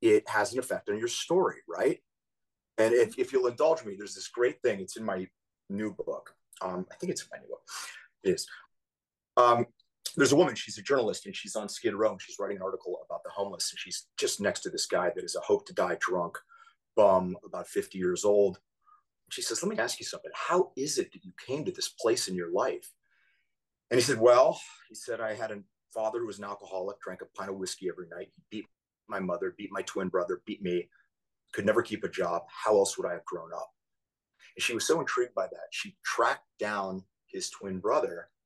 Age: 30-49